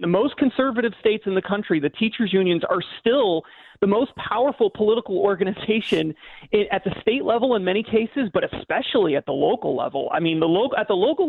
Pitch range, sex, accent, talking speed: 175-220 Hz, male, American, 200 wpm